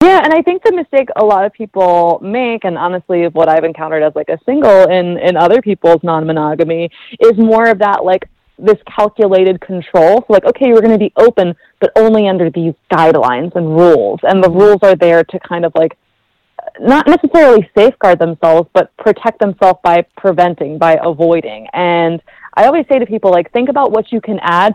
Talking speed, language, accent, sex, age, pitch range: 195 wpm, English, American, female, 30-49, 170-225 Hz